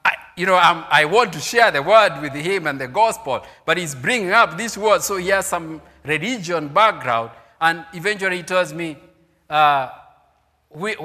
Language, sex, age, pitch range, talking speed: English, male, 50-69, 150-195 Hz, 170 wpm